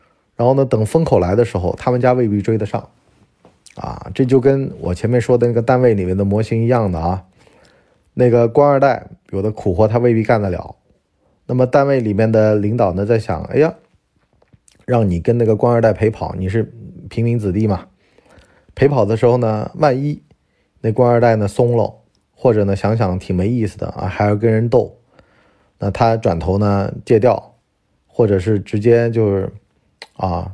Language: Chinese